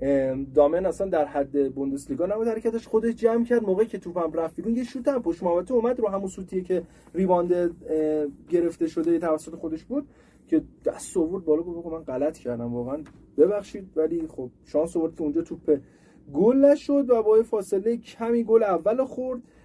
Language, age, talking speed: Persian, 30-49, 175 wpm